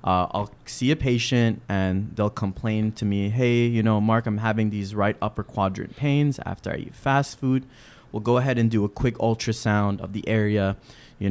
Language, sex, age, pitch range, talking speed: English, male, 20-39, 95-120 Hz, 200 wpm